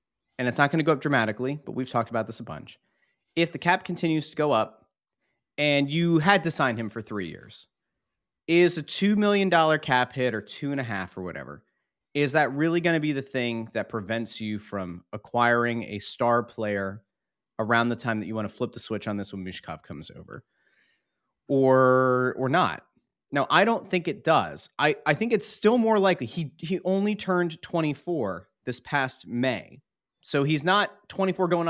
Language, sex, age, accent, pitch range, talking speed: English, male, 30-49, American, 115-170 Hz, 200 wpm